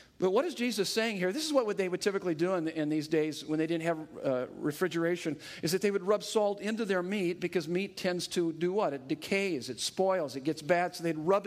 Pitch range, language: 155-185 Hz, English